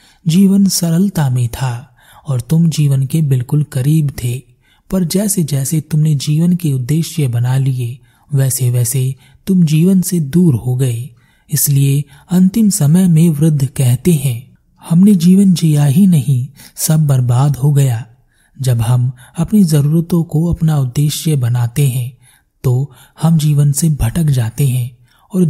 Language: Hindi